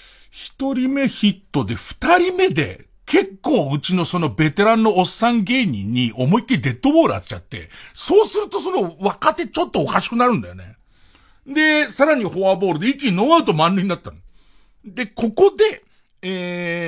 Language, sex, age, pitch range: Japanese, male, 50-69, 160-270 Hz